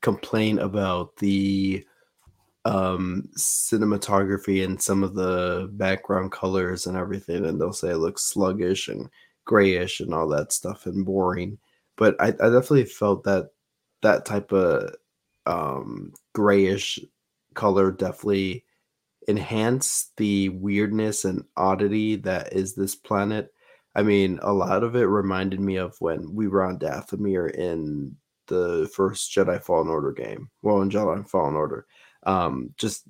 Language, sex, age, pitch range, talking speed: English, male, 20-39, 95-110 Hz, 140 wpm